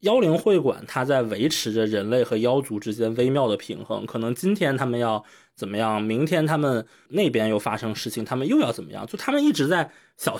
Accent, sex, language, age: native, male, Chinese, 20-39